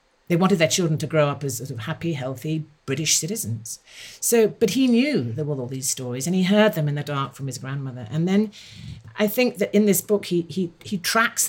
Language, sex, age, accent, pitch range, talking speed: English, female, 50-69, British, 130-160 Hz, 235 wpm